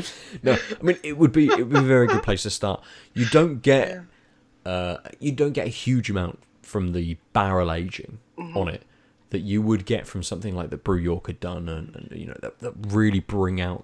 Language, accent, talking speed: English, British, 225 wpm